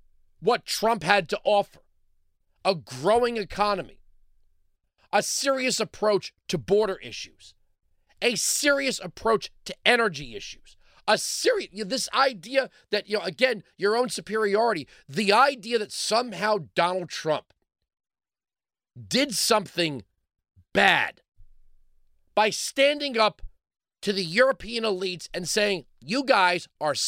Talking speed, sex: 120 wpm, male